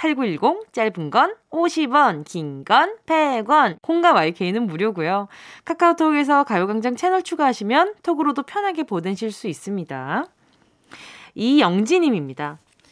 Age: 20-39